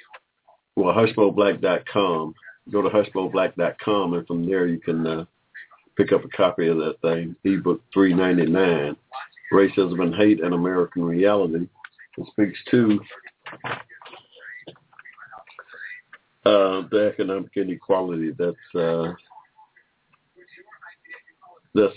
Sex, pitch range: male, 85-105 Hz